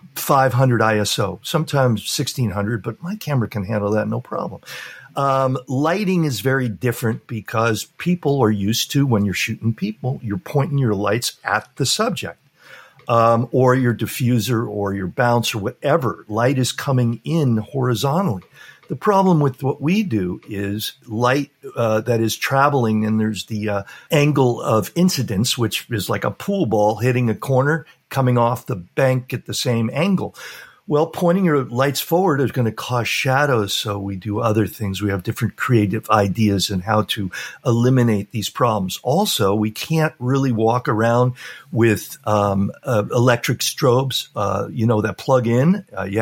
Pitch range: 110-135 Hz